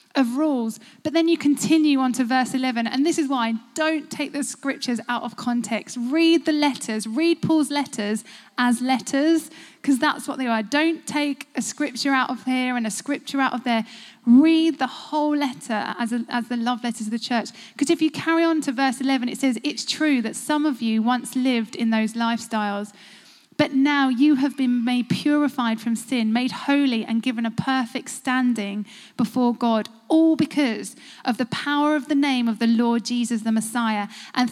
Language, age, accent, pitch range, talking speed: English, 10-29, British, 240-290 Hz, 195 wpm